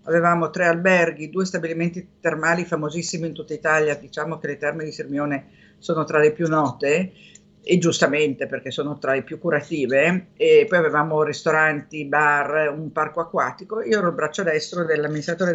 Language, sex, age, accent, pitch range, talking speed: Italian, female, 50-69, native, 155-190 Hz, 165 wpm